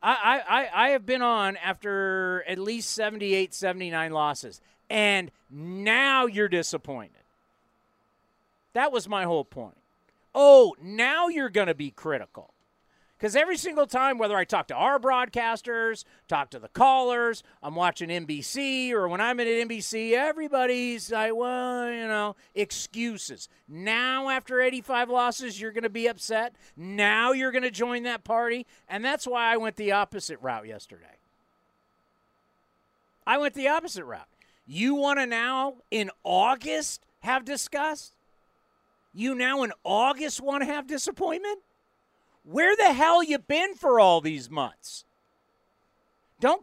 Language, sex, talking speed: English, male, 145 wpm